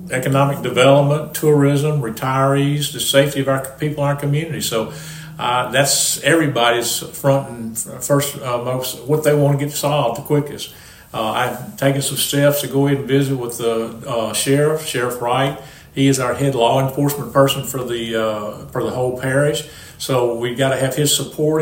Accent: American